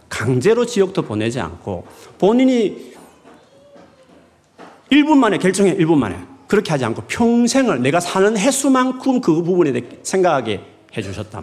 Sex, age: male, 40-59